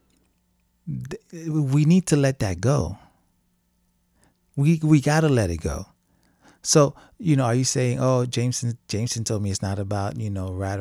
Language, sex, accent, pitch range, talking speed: English, male, American, 90-135 Hz, 165 wpm